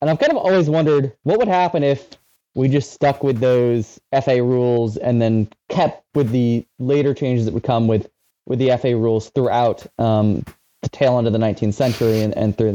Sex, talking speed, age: male, 205 wpm, 20-39